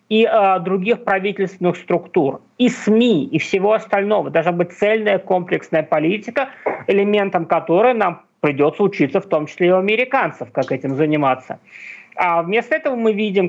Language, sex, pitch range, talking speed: Russian, male, 155-200 Hz, 150 wpm